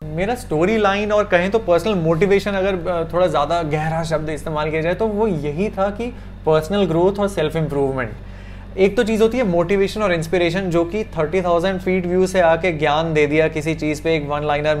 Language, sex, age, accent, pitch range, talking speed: Hindi, male, 20-39, native, 155-195 Hz, 205 wpm